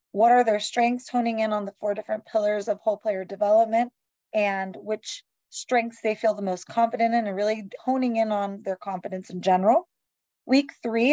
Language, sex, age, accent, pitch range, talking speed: English, female, 20-39, American, 195-225 Hz, 190 wpm